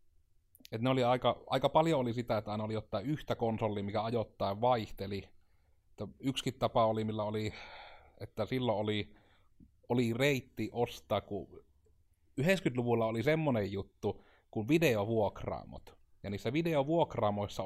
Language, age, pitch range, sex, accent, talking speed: Finnish, 30-49, 95-115 Hz, male, native, 125 wpm